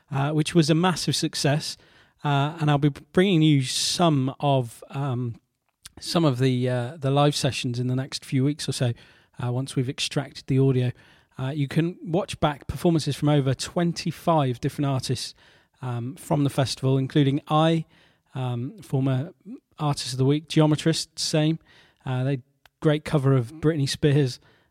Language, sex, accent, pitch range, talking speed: English, male, British, 135-155 Hz, 165 wpm